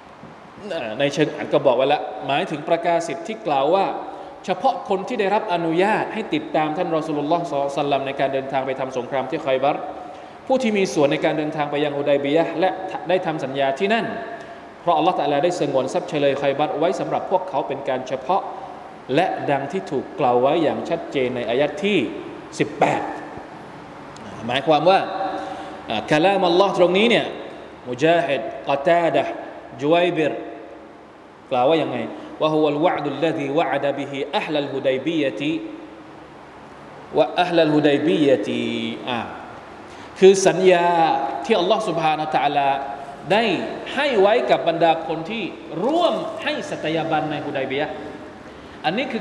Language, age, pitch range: Thai, 20-39, 145-200 Hz